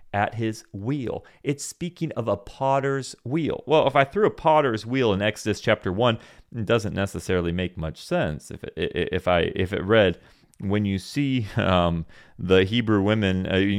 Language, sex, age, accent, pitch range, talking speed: English, male, 30-49, American, 90-120 Hz, 175 wpm